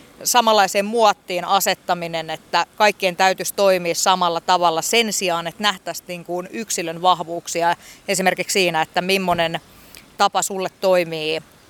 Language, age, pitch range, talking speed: Finnish, 30-49, 175-215 Hz, 115 wpm